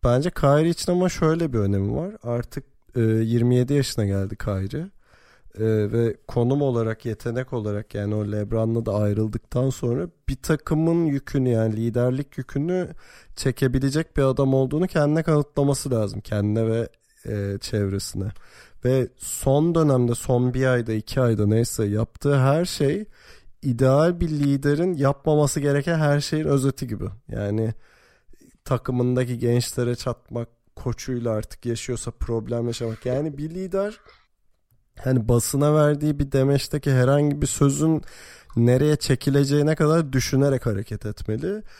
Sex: male